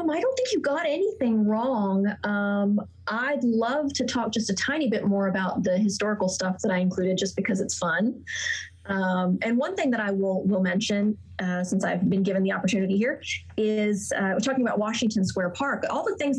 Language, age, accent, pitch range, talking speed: English, 30-49, American, 185-215 Hz, 205 wpm